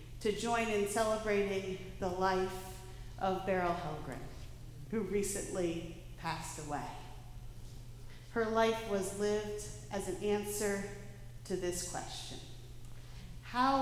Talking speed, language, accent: 105 wpm, English, American